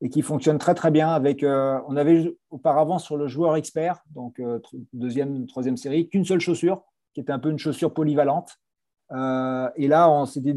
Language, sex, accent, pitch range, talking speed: French, male, French, 130-155 Hz, 200 wpm